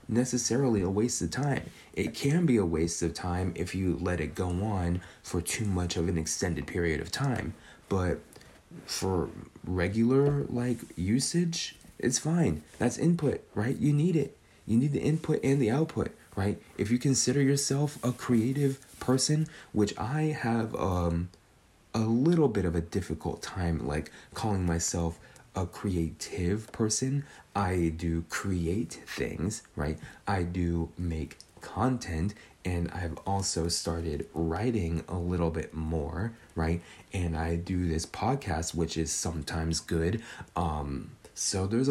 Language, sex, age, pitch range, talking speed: English, male, 30-49, 85-125 Hz, 145 wpm